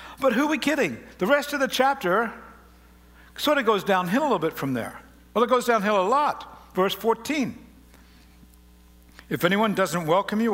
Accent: American